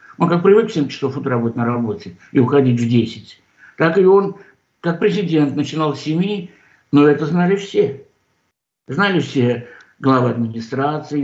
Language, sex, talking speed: Russian, male, 155 wpm